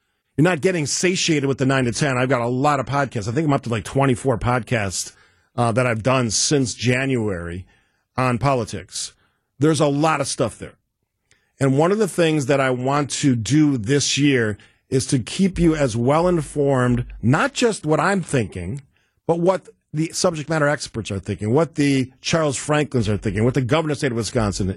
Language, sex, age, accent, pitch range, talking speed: English, male, 50-69, American, 115-160 Hz, 200 wpm